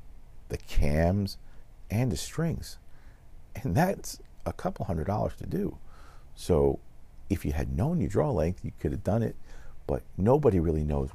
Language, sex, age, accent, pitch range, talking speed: English, male, 50-69, American, 65-85 Hz, 160 wpm